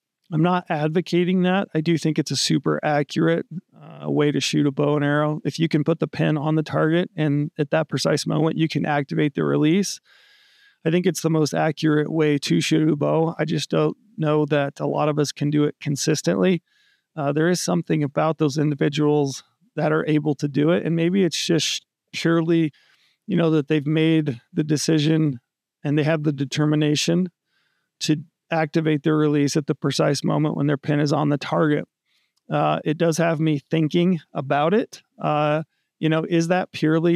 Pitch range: 150-165 Hz